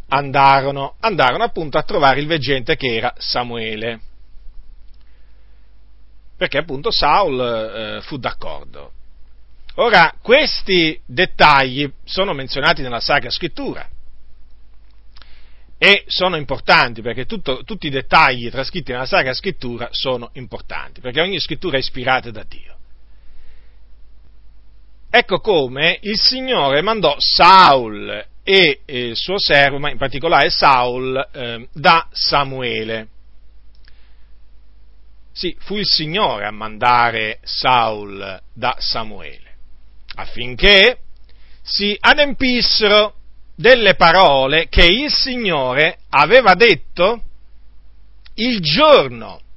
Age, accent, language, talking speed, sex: 40-59, native, Italian, 100 wpm, male